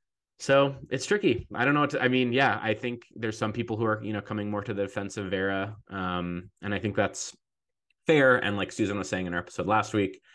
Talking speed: 250 wpm